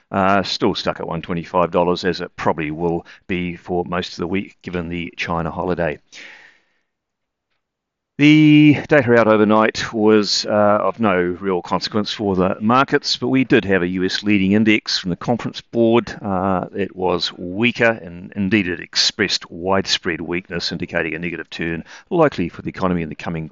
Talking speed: 165 wpm